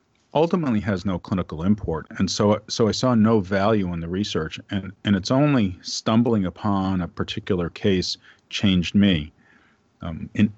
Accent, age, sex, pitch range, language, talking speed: American, 40-59, male, 90-105 Hz, English, 160 wpm